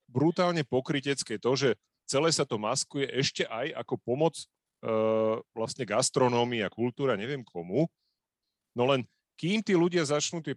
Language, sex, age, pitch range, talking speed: Slovak, male, 40-59, 110-140 Hz, 140 wpm